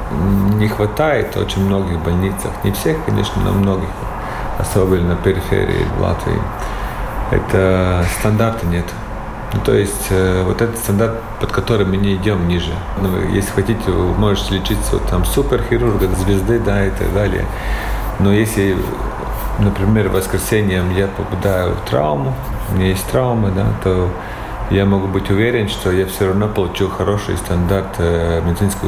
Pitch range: 95-105 Hz